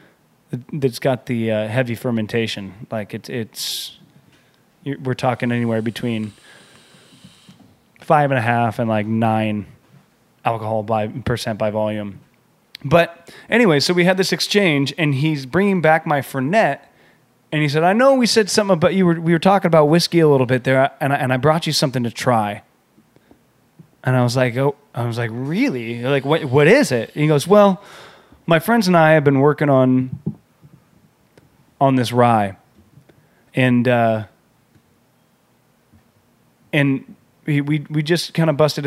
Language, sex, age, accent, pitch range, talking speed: English, male, 20-39, American, 120-155 Hz, 165 wpm